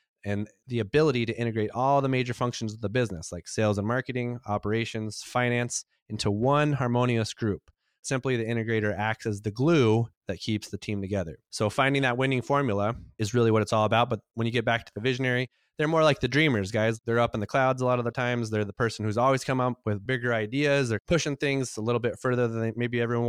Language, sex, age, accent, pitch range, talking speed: English, male, 30-49, American, 110-125 Hz, 230 wpm